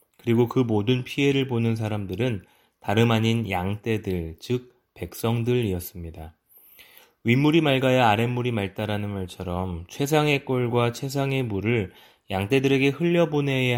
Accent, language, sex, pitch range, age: native, Korean, male, 105-130 Hz, 20-39